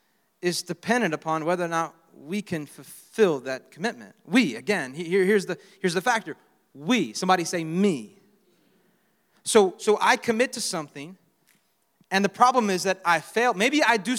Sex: male